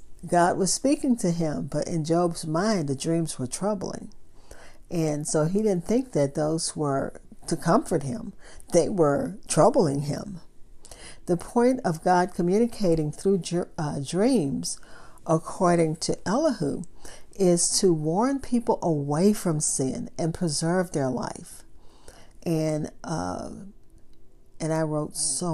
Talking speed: 130 wpm